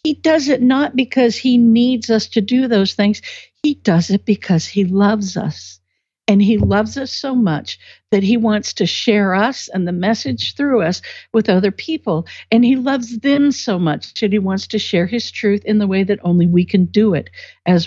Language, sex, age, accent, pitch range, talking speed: English, female, 60-79, American, 185-245 Hz, 210 wpm